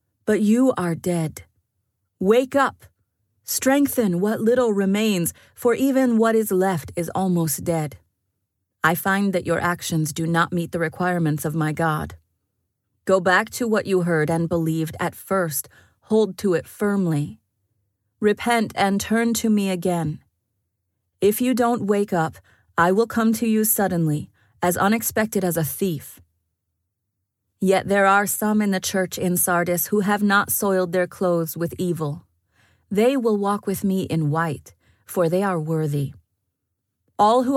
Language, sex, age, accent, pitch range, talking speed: English, female, 30-49, American, 130-200 Hz, 155 wpm